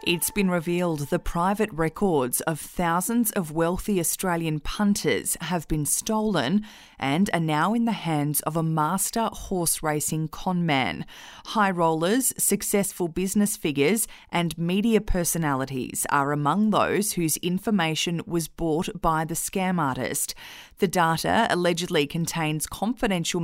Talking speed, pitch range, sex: 135 wpm, 160-200 Hz, female